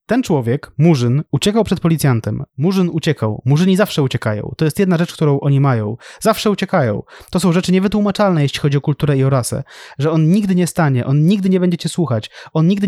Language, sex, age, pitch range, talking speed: Polish, male, 20-39, 140-185 Hz, 205 wpm